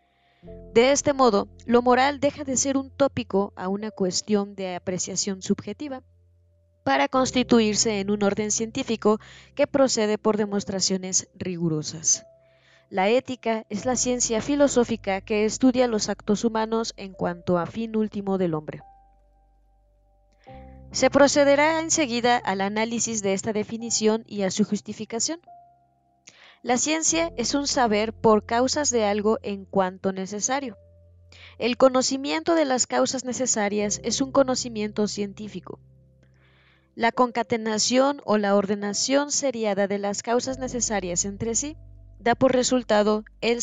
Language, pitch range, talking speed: Spanish, 190-250 Hz, 130 wpm